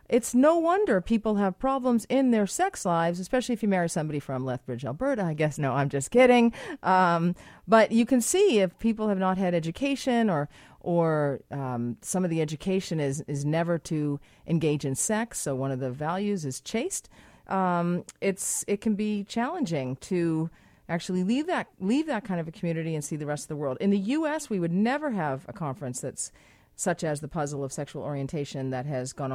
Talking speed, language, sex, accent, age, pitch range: 200 wpm, English, female, American, 40-59, 135-210 Hz